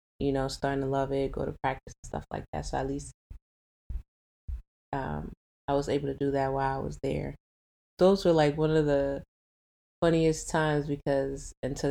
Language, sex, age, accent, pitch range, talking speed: English, female, 20-39, American, 130-145 Hz, 185 wpm